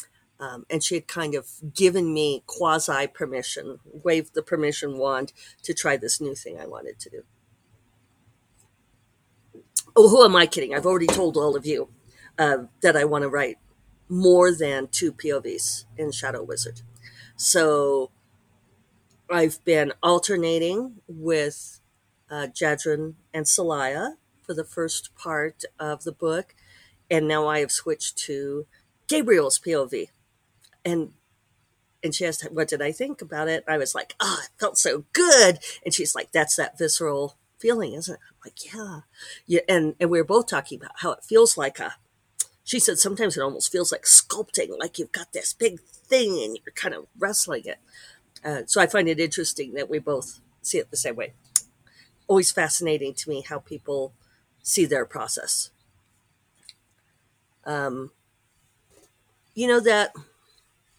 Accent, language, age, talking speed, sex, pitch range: American, English, 50-69, 160 wpm, female, 125-175 Hz